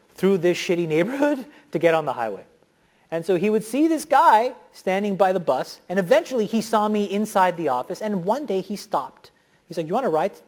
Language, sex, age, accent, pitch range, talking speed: Dutch, male, 30-49, American, 150-195 Hz, 225 wpm